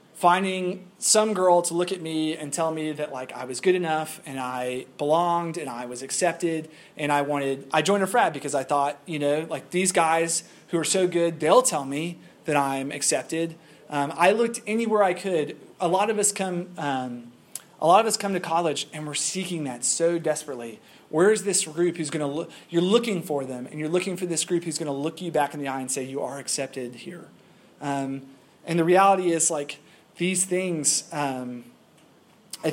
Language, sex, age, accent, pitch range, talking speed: English, male, 30-49, American, 140-175 Hz, 215 wpm